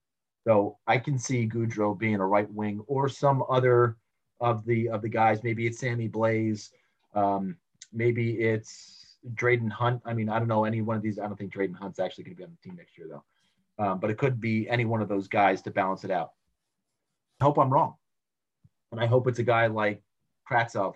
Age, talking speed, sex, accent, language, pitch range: 30-49, 220 wpm, male, American, English, 105-130 Hz